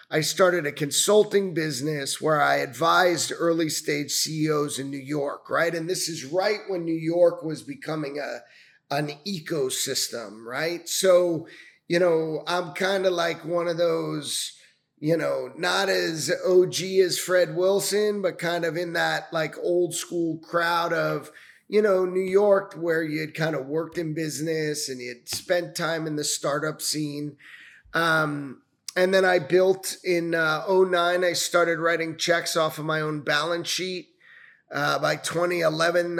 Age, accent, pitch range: 30-49, American, 150-175 Hz